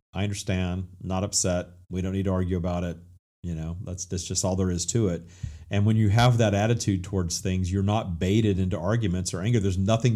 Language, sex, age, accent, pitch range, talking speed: English, male, 40-59, American, 90-110 Hz, 230 wpm